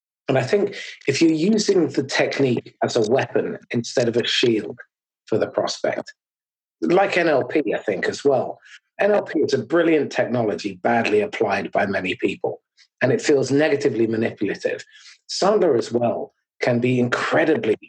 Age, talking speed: 40-59, 150 wpm